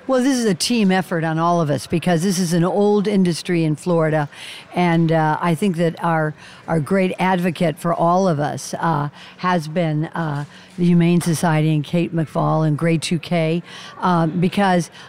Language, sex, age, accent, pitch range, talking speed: English, female, 60-79, American, 160-185 Hz, 185 wpm